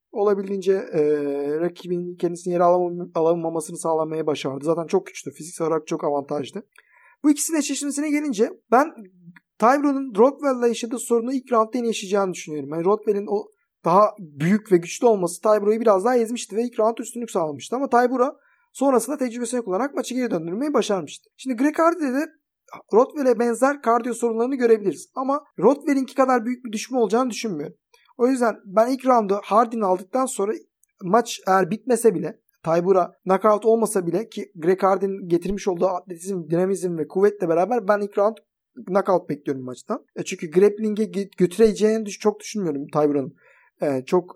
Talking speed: 155 wpm